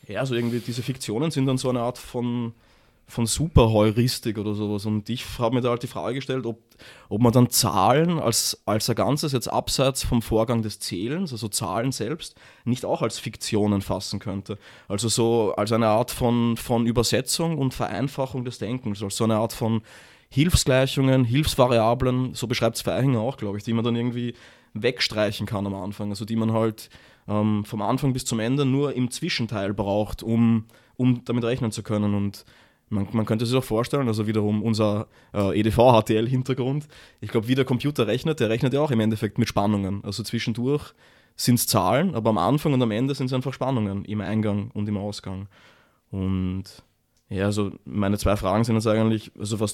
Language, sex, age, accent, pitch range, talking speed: German, male, 20-39, Austrian, 105-125 Hz, 190 wpm